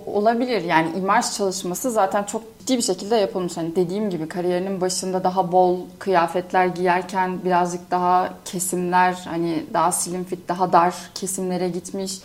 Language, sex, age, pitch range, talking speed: Turkish, female, 30-49, 180-225 Hz, 145 wpm